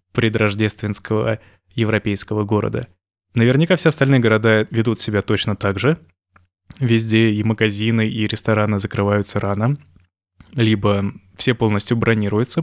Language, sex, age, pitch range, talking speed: Russian, male, 20-39, 100-115 Hz, 110 wpm